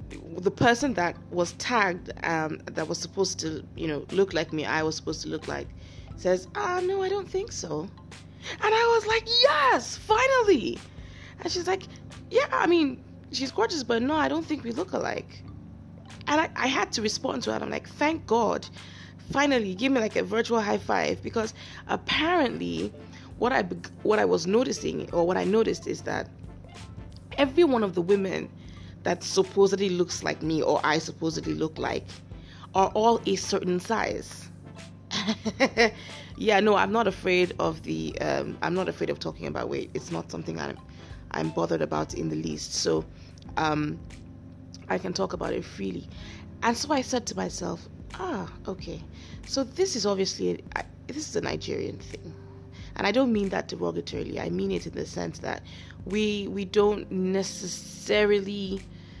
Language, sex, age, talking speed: English, female, 20-39, 175 wpm